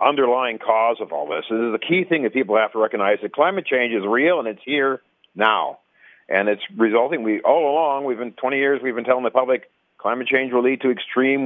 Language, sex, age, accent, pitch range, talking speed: English, male, 50-69, American, 120-155 Hz, 235 wpm